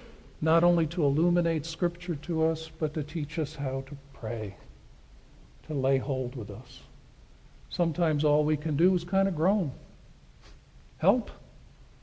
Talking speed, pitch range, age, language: 145 wpm, 130-160 Hz, 60-79, English